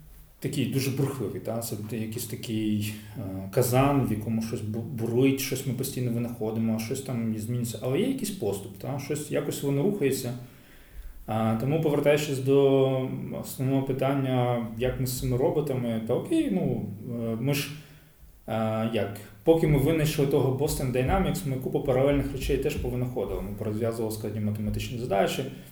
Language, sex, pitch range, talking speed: Ukrainian, male, 105-130 Hz, 150 wpm